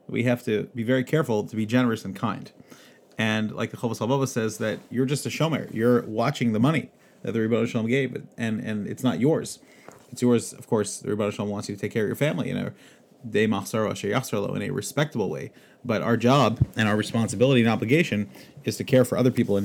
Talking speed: 215 wpm